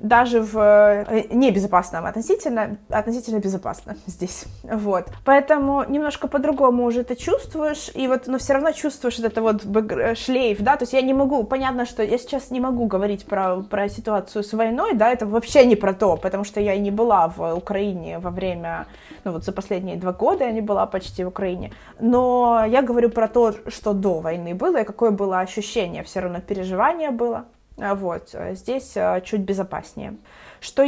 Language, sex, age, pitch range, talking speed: Ukrainian, female, 20-39, 200-250 Hz, 175 wpm